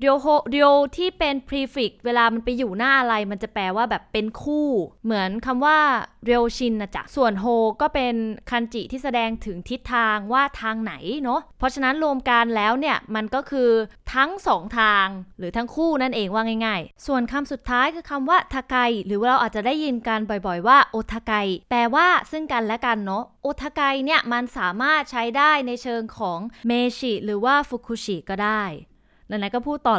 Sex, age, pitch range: female, 20-39, 215-265 Hz